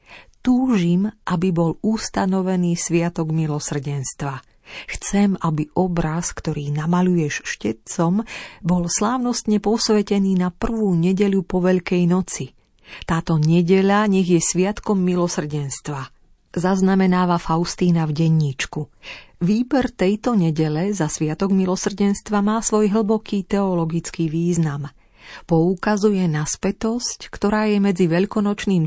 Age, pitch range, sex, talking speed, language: 40-59, 165-205 Hz, female, 100 wpm, Slovak